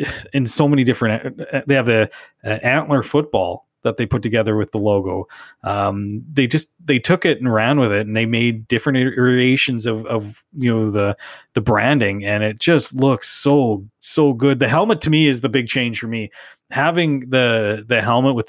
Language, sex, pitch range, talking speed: English, male, 110-145 Hz, 200 wpm